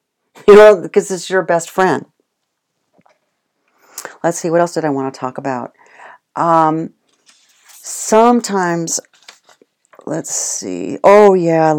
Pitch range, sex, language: 135-180 Hz, female, English